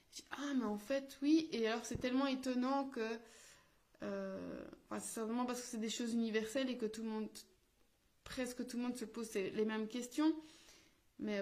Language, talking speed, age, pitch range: French, 190 wpm, 20-39, 210-260 Hz